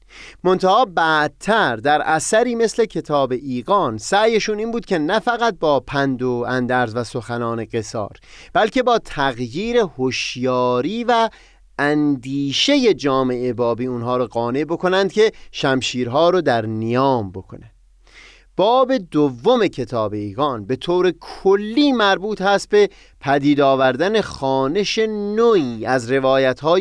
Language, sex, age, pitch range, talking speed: Persian, male, 30-49, 125-200 Hz, 120 wpm